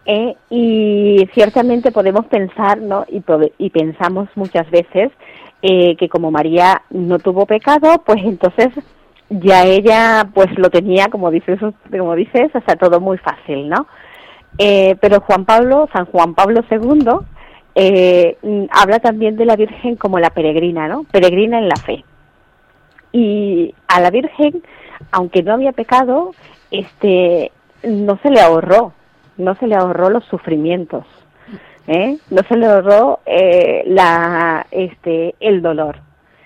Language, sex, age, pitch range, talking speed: Spanish, female, 30-49, 175-220 Hz, 140 wpm